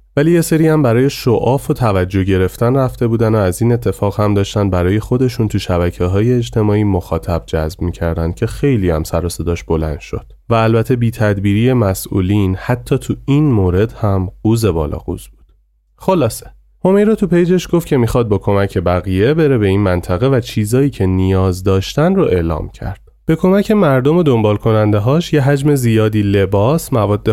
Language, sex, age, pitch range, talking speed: Persian, male, 30-49, 95-135 Hz, 175 wpm